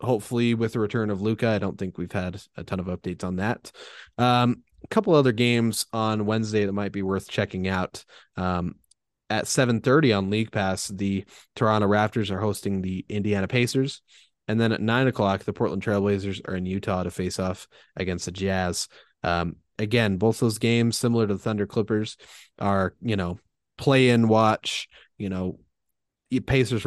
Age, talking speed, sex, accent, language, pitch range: 20-39, 180 wpm, male, American, English, 95-115 Hz